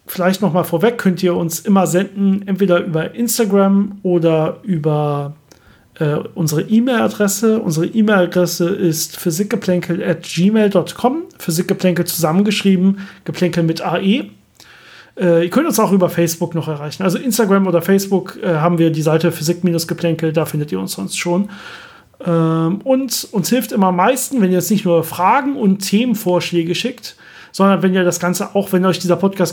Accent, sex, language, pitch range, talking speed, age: German, male, German, 165-195 Hz, 160 wpm, 40-59